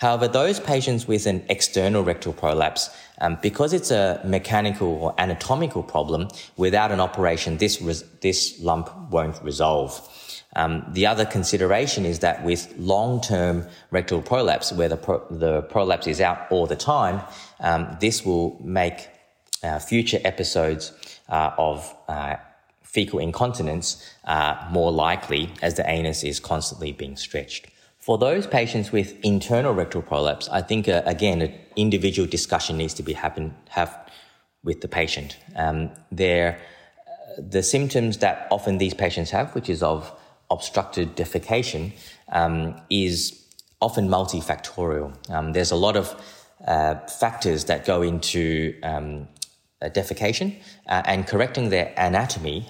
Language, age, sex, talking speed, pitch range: English, 20-39, male, 140 wpm, 80-100 Hz